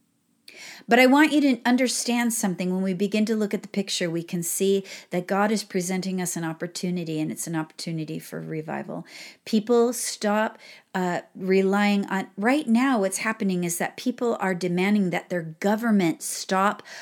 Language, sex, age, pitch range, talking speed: English, female, 40-59, 185-225 Hz, 175 wpm